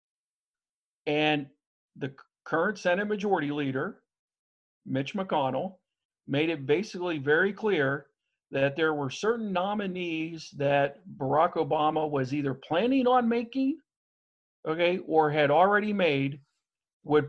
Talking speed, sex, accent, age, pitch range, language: 110 wpm, male, American, 50-69, 145-185 Hz, English